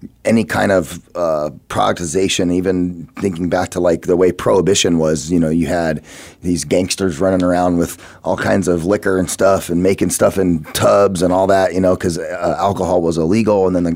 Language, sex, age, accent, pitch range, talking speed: English, male, 30-49, American, 90-105 Hz, 200 wpm